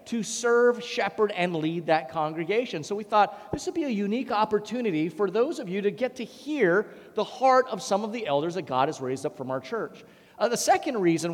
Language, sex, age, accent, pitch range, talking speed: English, male, 30-49, American, 190-250 Hz, 230 wpm